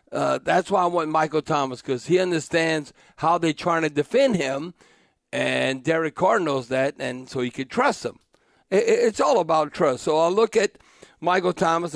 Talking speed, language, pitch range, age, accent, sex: 190 wpm, English, 150-180 Hz, 50-69, American, male